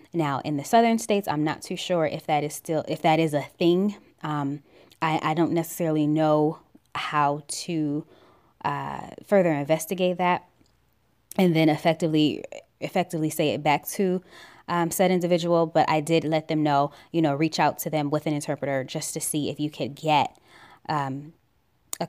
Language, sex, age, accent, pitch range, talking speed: English, female, 10-29, American, 150-180 Hz, 175 wpm